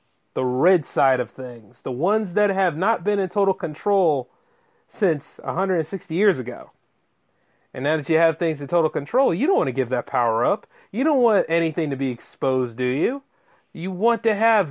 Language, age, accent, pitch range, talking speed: English, 30-49, American, 140-215 Hz, 195 wpm